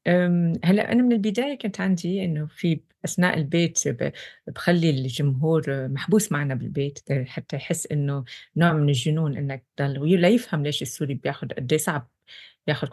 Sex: female